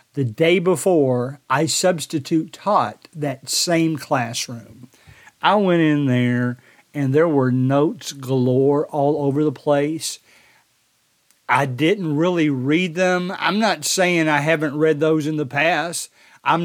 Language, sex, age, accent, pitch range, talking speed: English, male, 50-69, American, 145-185 Hz, 135 wpm